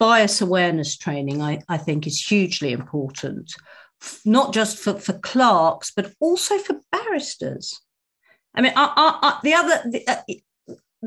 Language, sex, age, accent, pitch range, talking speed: English, female, 50-69, British, 175-225 Hz, 145 wpm